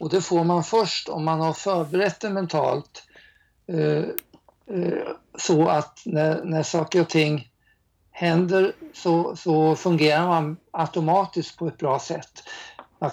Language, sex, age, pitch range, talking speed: Swedish, male, 60-79, 155-180 Hz, 140 wpm